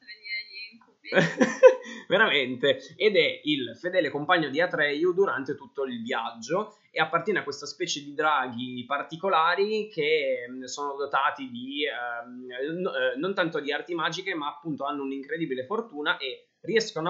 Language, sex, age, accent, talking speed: Italian, male, 20-39, native, 130 wpm